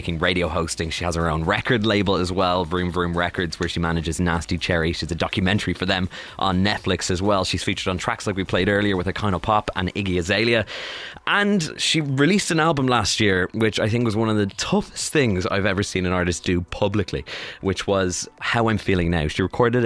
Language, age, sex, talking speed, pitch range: English, 20-39, male, 225 wpm, 85-105 Hz